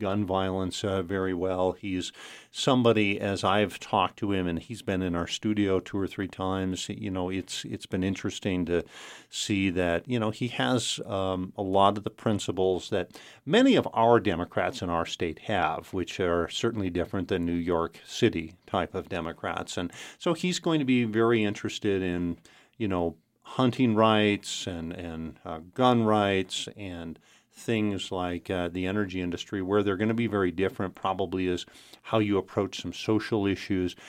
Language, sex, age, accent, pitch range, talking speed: English, male, 50-69, American, 95-110 Hz, 180 wpm